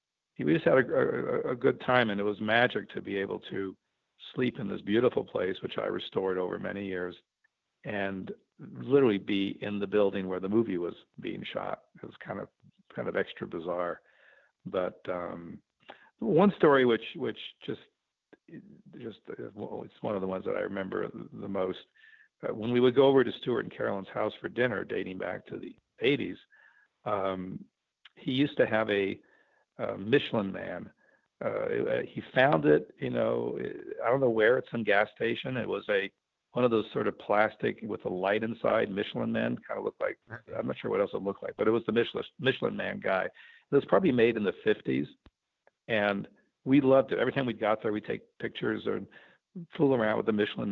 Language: English